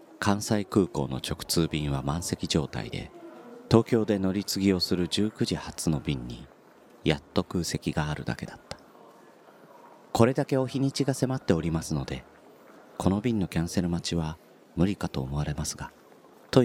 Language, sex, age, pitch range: Japanese, male, 40-59, 80-105 Hz